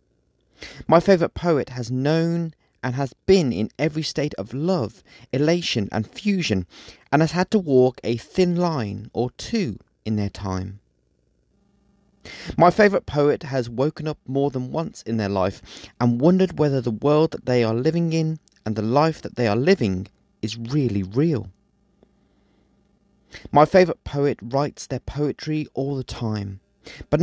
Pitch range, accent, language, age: 110-160 Hz, British, English, 30-49